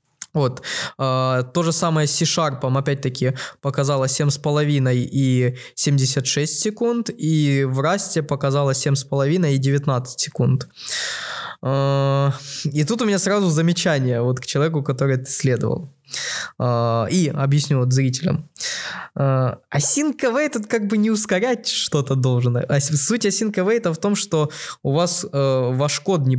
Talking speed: 130 wpm